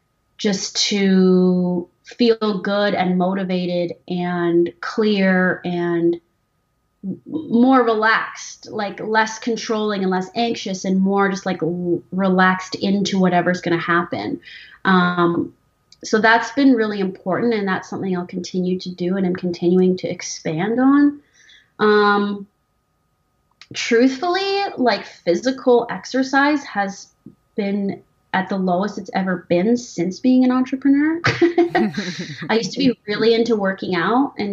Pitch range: 175-220 Hz